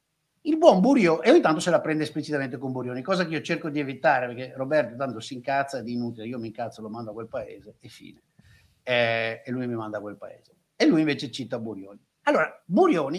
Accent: native